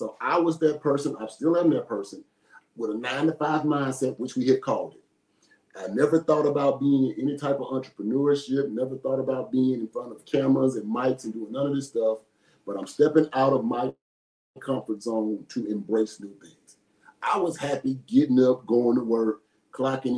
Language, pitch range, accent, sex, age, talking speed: English, 110-150 Hz, American, male, 40-59, 195 wpm